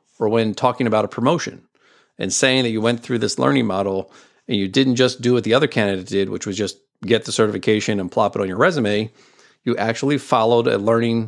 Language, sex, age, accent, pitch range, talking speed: English, male, 40-59, American, 110-140 Hz, 225 wpm